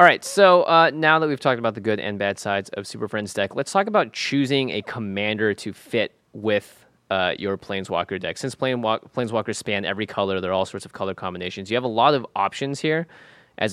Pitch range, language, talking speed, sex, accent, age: 95-125 Hz, English, 220 wpm, male, American, 20-39